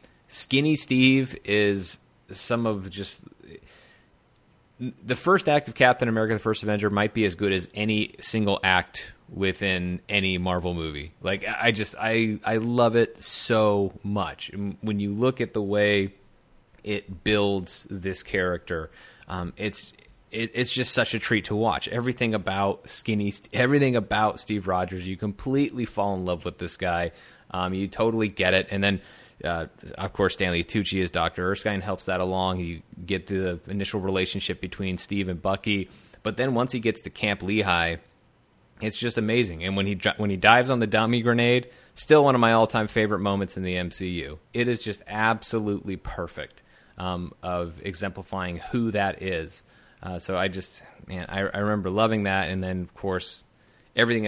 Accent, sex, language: American, male, English